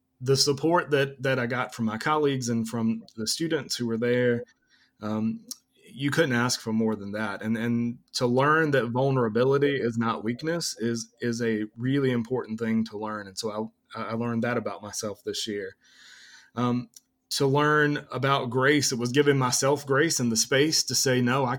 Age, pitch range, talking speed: 30-49, 120-145 Hz, 190 wpm